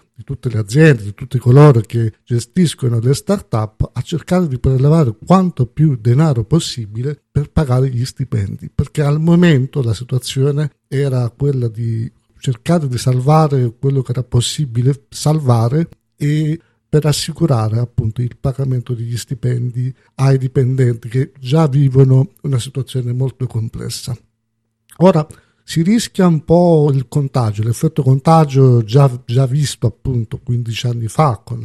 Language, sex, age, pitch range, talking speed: Italian, male, 50-69, 120-145 Hz, 140 wpm